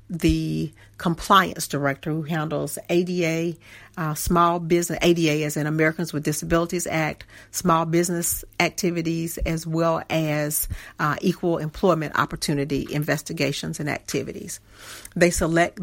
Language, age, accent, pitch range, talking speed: English, 40-59, American, 155-175 Hz, 120 wpm